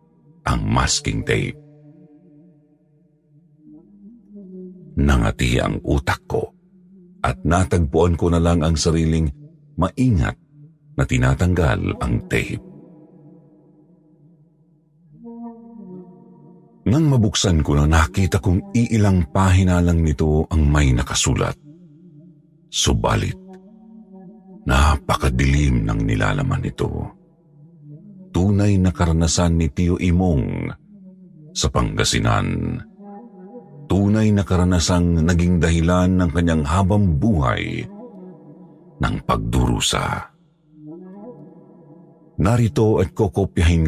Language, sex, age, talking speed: Filipino, male, 50-69, 80 wpm